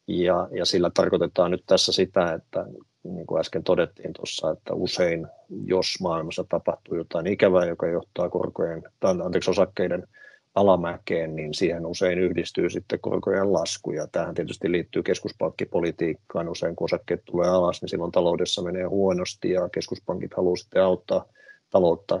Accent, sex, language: native, male, Finnish